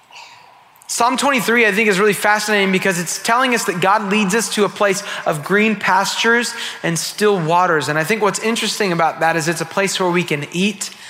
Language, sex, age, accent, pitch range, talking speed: English, male, 30-49, American, 170-220 Hz, 210 wpm